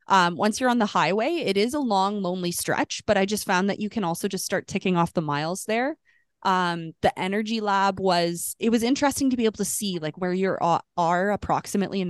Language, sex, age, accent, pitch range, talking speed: English, female, 20-39, American, 175-210 Hz, 235 wpm